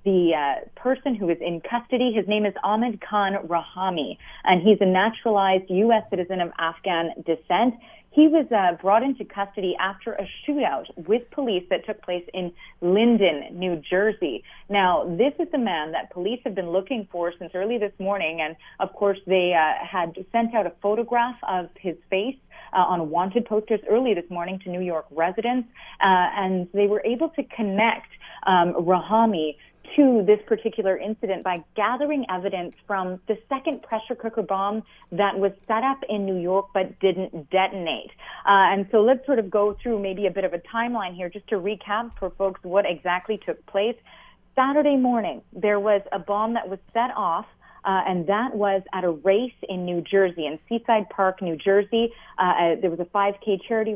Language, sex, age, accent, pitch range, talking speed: English, female, 30-49, American, 180-225 Hz, 185 wpm